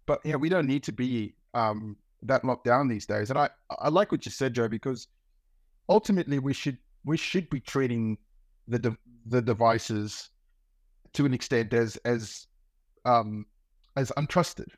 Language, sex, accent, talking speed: English, male, Australian, 165 wpm